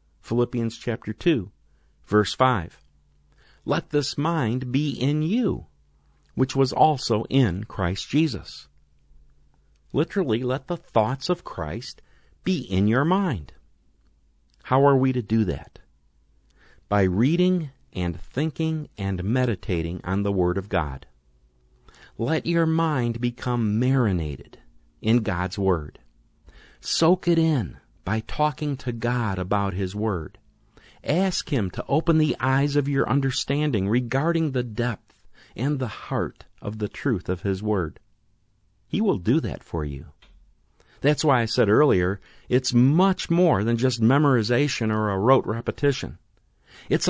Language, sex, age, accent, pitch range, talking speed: English, male, 50-69, American, 90-140 Hz, 135 wpm